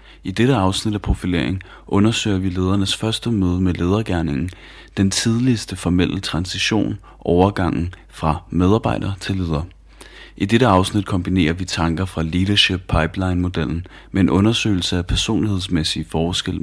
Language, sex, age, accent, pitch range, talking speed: Danish, male, 30-49, native, 85-100 Hz, 135 wpm